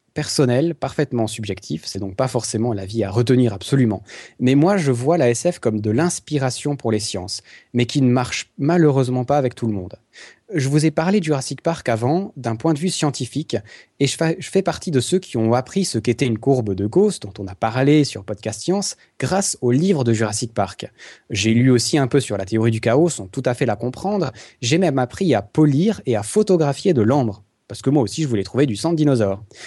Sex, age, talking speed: male, 20-39, 225 wpm